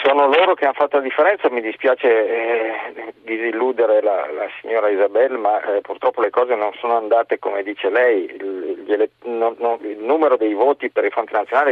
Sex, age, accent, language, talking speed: male, 40-59, native, Italian, 195 wpm